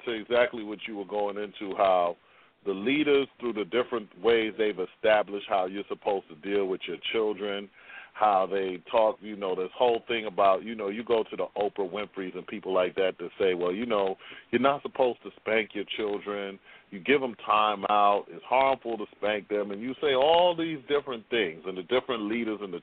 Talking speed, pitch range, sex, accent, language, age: 210 wpm, 100-145 Hz, male, American, English, 40-59